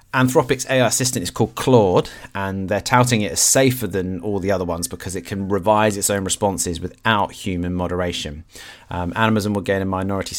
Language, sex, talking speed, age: English, male, 190 wpm, 30-49